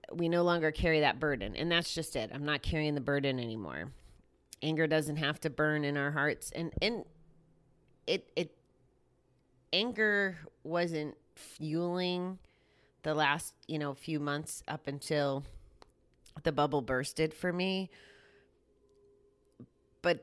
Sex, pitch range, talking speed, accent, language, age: female, 125-160 Hz, 135 wpm, American, English, 30-49